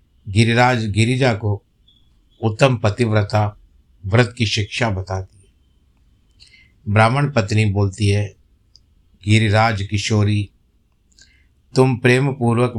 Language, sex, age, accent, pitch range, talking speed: Hindi, male, 50-69, native, 95-120 Hz, 90 wpm